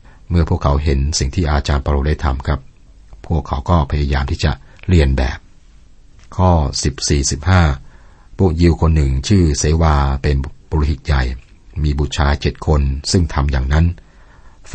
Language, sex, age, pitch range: Thai, male, 60-79, 70-85 Hz